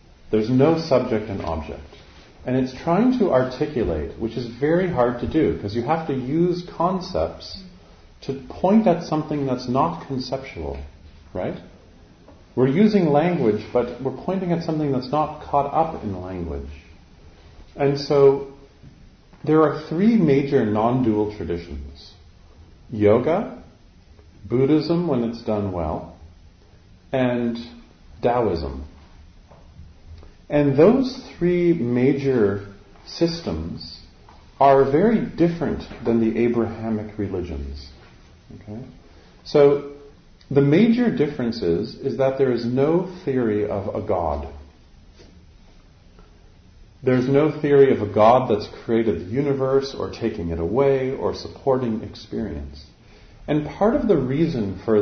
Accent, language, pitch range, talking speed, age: American, English, 85-140 Hz, 120 wpm, 40-59